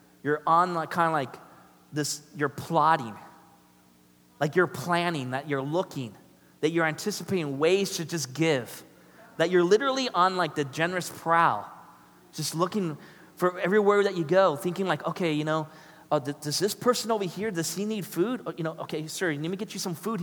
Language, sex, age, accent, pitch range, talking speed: English, male, 20-39, American, 125-190 Hz, 185 wpm